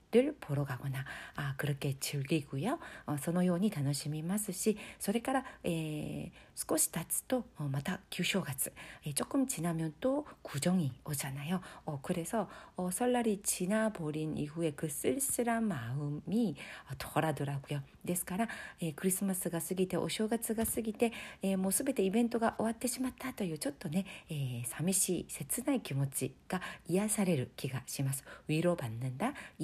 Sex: female